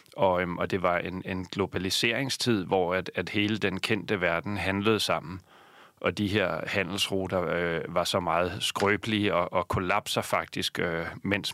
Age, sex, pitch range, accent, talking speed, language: 30-49, male, 95-110 Hz, native, 165 wpm, Danish